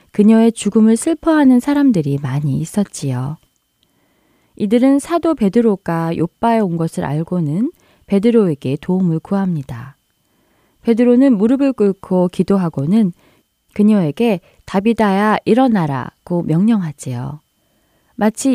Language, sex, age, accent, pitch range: Korean, female, 20-39, native, 165-240 Hz